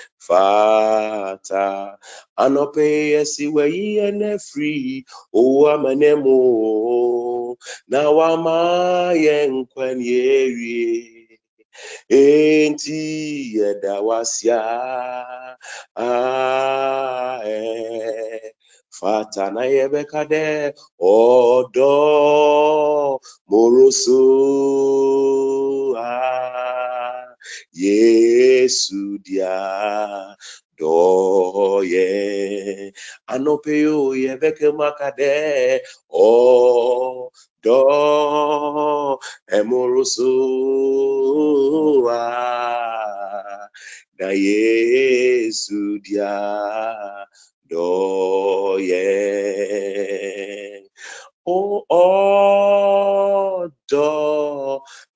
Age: 30-49